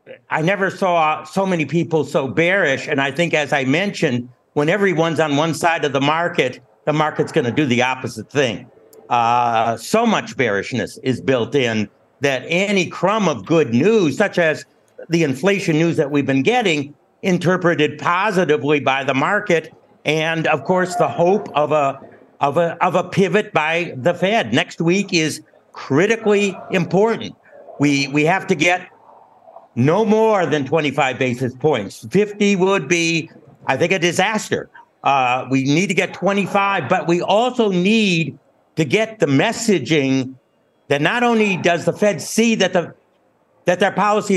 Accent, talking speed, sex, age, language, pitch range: American, 160 wpm, male, 60-79, English, 150-195 Hz